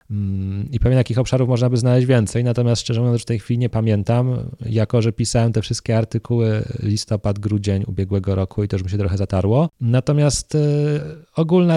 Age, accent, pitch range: 20-39, native, 95-120 Hz